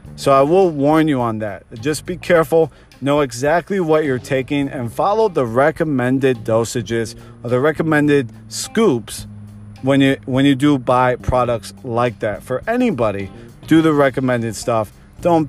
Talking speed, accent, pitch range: 155 wpm, American, 115-140 Hz